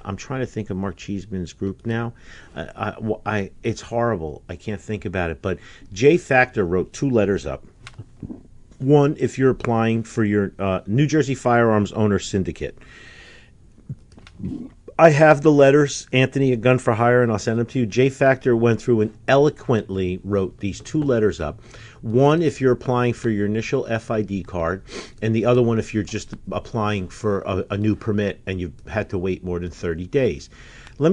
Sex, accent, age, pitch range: male, American, 50-69, 100-125 Hz